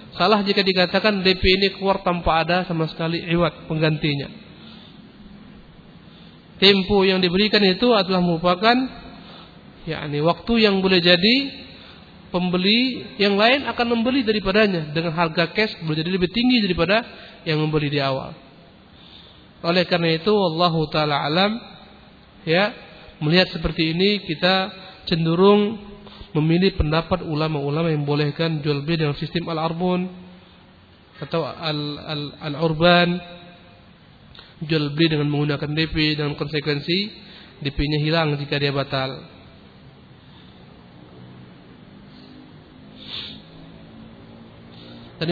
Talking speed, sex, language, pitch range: 105 wpm, male, Indonesian, 155-195 Hz